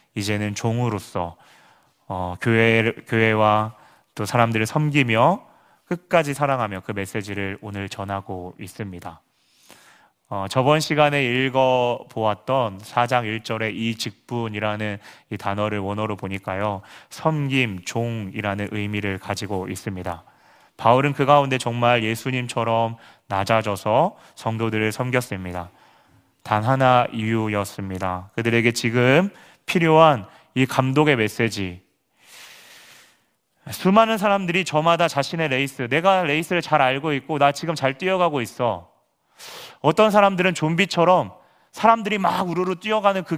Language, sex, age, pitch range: Korean, male, 30-49, 105-150 Hz